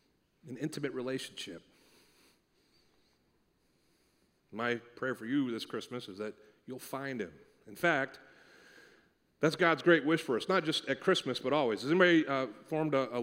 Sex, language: male, English